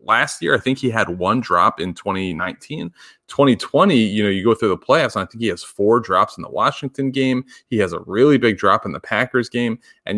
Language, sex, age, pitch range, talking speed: English, male, 20-39, 100-125 Hz, 235 wpm